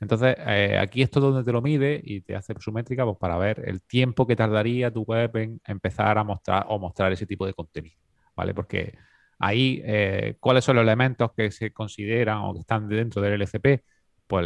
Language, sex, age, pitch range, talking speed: Spanish, male, 30-49, 90-120 Hz, 215 wpm